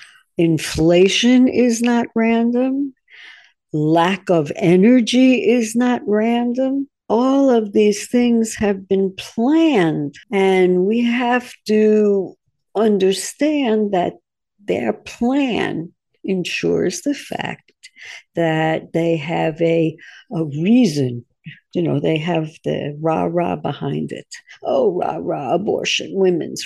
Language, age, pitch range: English, 60-79, 165-235 Hz